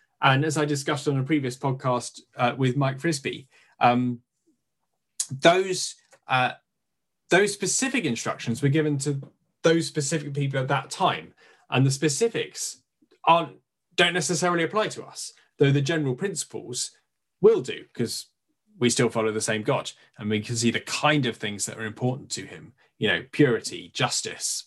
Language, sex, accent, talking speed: English, male, British, 160 wpm